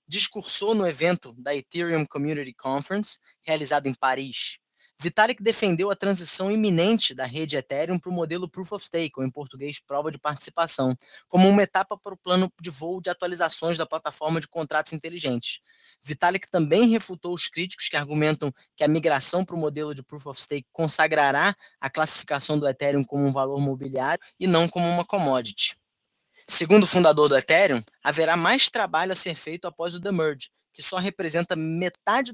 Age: 20-39